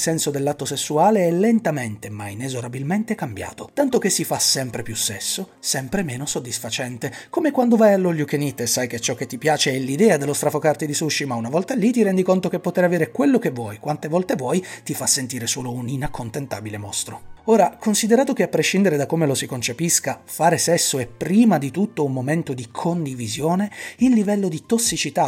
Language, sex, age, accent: Italian, male, 30-49, native